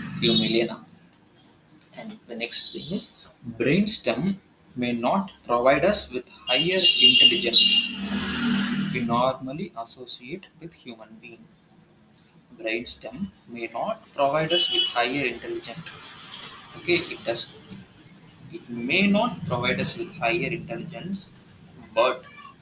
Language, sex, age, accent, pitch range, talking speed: English, male, 20-39, Indian, 125-195 Hz, 105 wpm